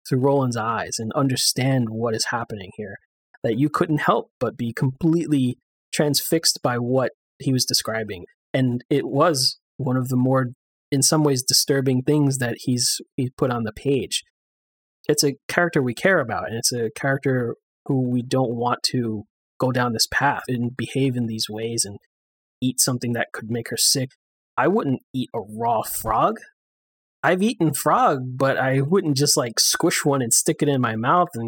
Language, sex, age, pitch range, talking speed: English, male, 20-39, 120-150 Hz, 185 wpm